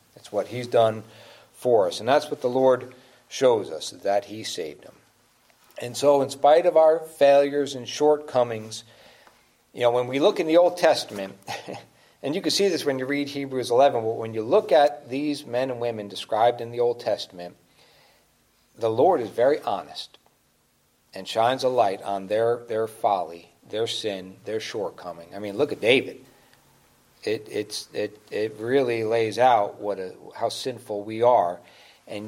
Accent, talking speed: American, 175 wpm